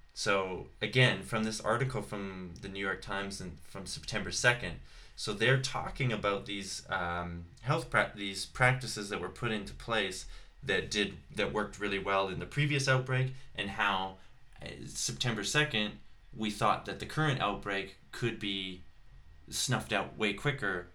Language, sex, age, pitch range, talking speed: English, male, 20-39, 95-125 Hz, 160 wpm